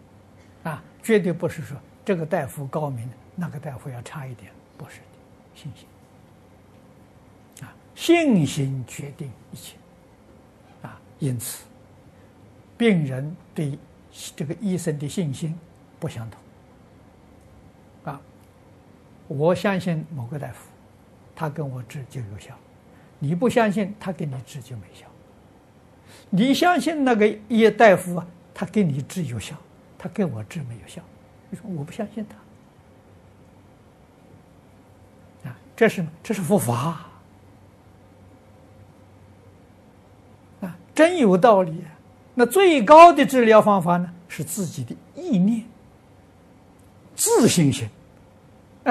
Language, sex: Chinese, male